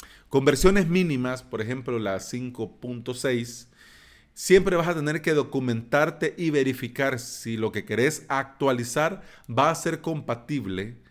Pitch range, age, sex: 115-155 Hz, 40-59, male